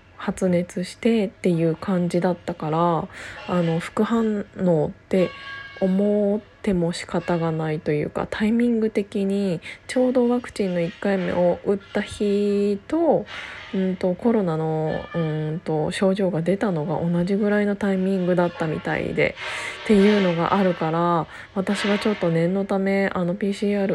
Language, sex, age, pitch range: Japanese, female, 20-39, 170-205 Hz